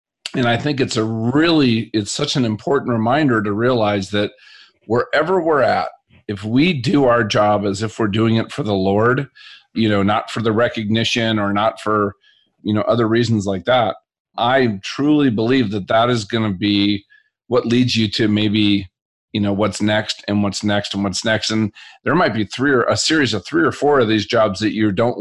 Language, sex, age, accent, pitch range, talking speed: English, male, 40-59, American, 105-120 Hz, 205 wpm